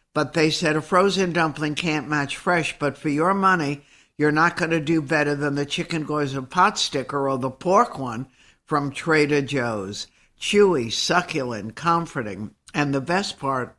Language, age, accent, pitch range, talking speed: English, 60-79, American, 135-170 Hz, 165 wpm